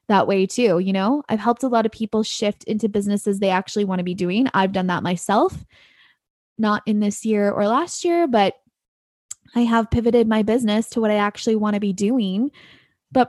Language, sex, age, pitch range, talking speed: English, female, 20-39, 210-250 Hz, 210 wpm